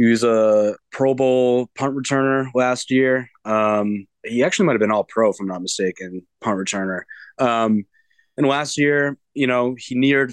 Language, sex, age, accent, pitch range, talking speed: English, male, 20-39, American, 110-130 Hz, 180 wpm